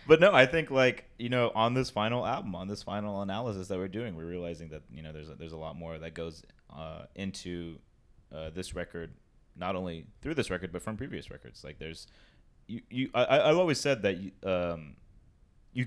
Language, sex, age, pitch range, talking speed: English, male, 20-39, 80-95 Hz, 215 wpm